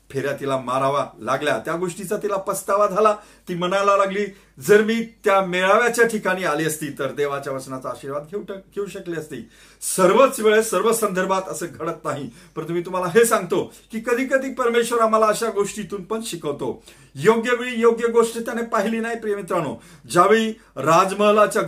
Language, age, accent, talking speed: Marathi, 40-59, native, 70 wpm